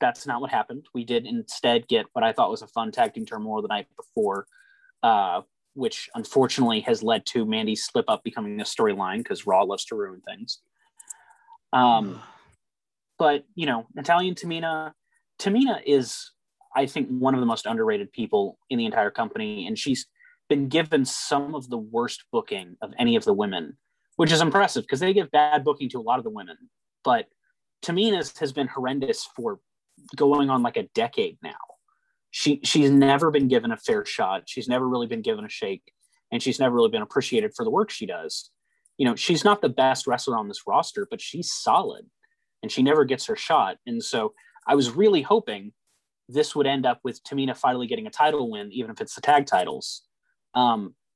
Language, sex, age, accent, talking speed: English, male, 30-49, American, 195 wpm